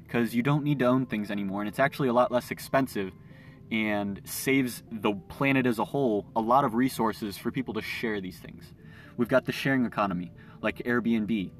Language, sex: English, male